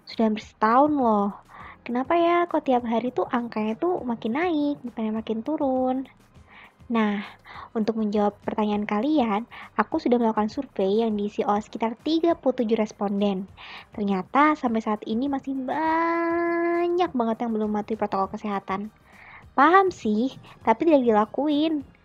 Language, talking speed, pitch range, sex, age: Indonesian, 135 wpm, 215-280 Hz, male, 20-39